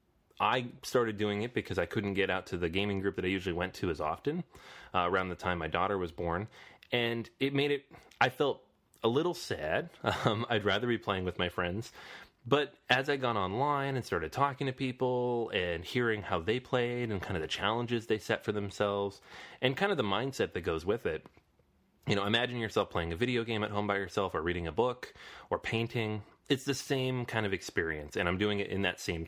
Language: English